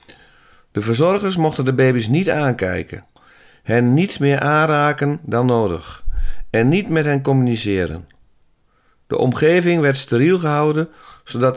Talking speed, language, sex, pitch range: 125 wpm, English, male, 90-130 Hz